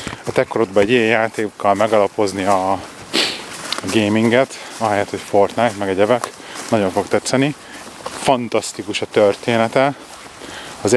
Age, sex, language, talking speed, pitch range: 30-49, male, Hungarian, 130 wpm, 105-120 Hz